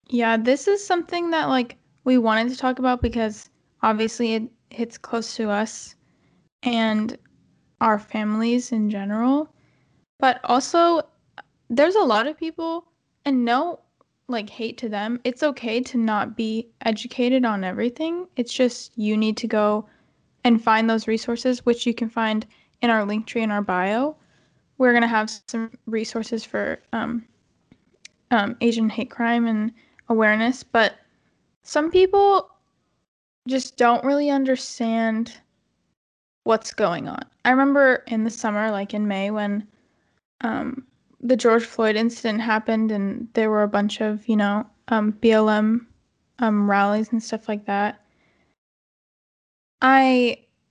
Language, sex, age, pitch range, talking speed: English, female, 10-29, 220-255 Hz, 145 wpm